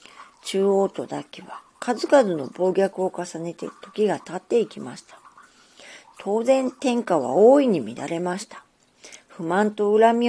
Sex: female